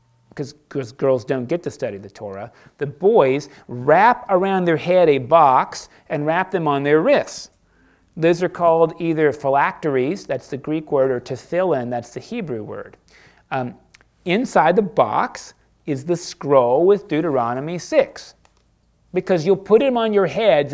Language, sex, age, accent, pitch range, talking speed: English, male, 40-59, American, 125-165 Hz, 155 wpm